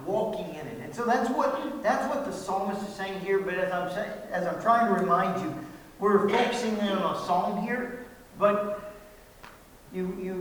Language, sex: English, male